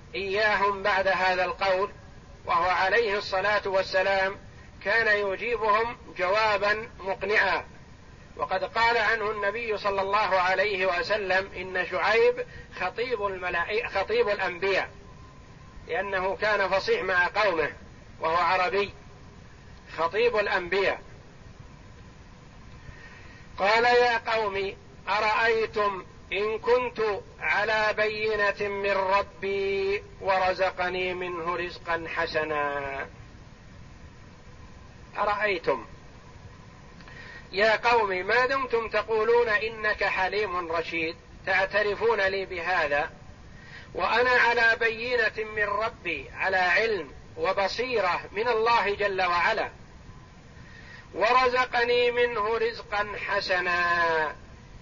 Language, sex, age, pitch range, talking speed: Arabic, male, 50-69, 185-230 Hz, 85 wpm